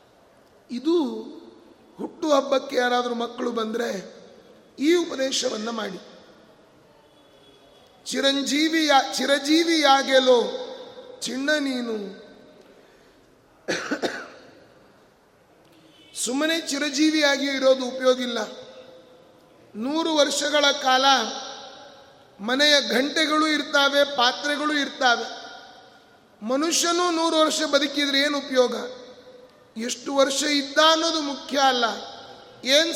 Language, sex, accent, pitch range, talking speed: Kannada, male, native, 250-295 Hz, 70 wpm